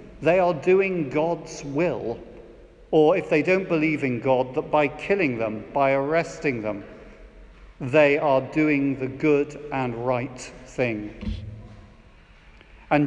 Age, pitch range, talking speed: 50-69, 145-200 Hz, 130 wpm